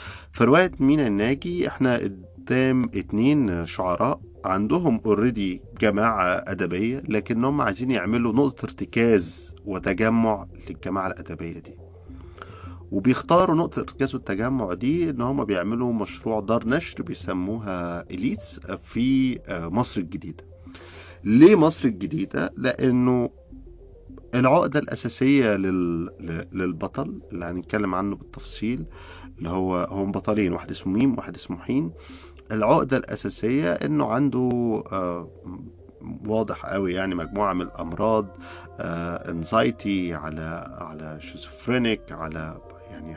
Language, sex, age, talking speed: Arabic, male, 40-59, 105 wpm